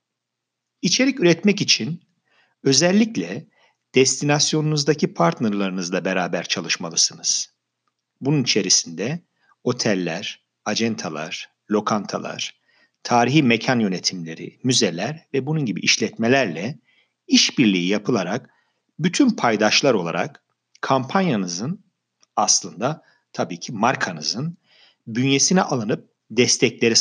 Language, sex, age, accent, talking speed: Turkish, male, 50-69, native, 75 wpm